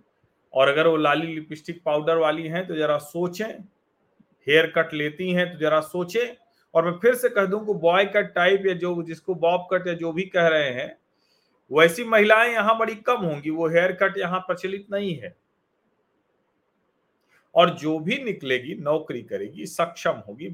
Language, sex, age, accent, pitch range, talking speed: Hindi, male, 40-59, native, 150-195 Hz, 170 wpm